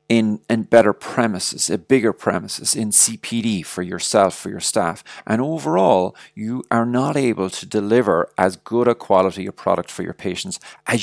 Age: 40-59